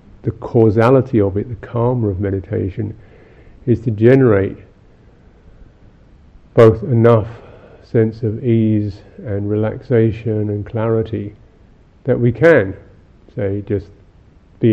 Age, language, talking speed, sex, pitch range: 50-69, English, 105 wpm, male, 100-120 Hz